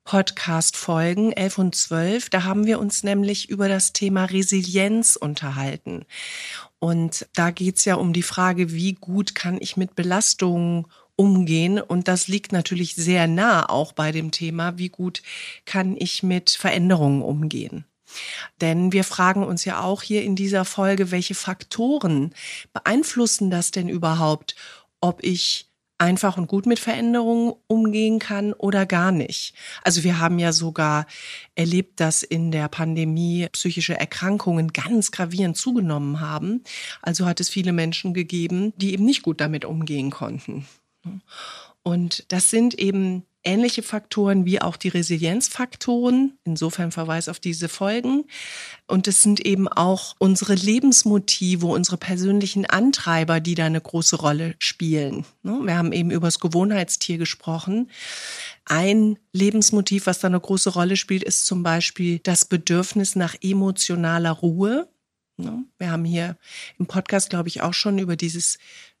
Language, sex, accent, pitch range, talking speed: German, female, German, 170-200 Hz, 145 wpm